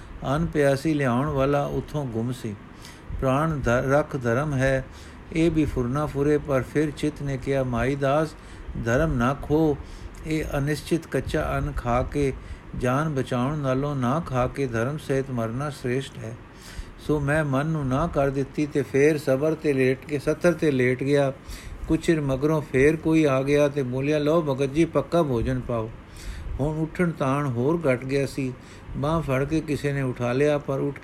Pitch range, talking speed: 130-150 Hz, 170 wpm